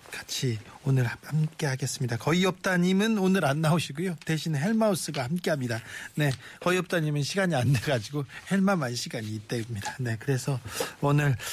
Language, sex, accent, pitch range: Korean, male, native, 125-170 Hz